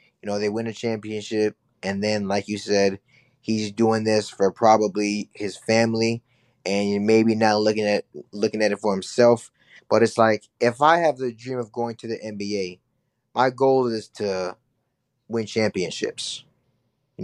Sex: male